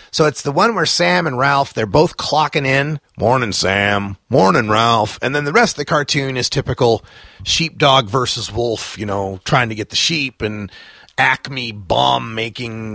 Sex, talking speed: male, 175 wpm